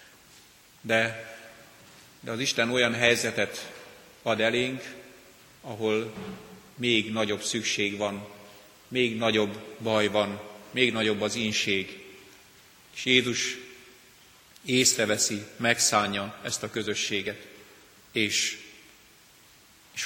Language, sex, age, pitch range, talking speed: Hungarian, male, 30-49, 105-125 Hz, 90 wpm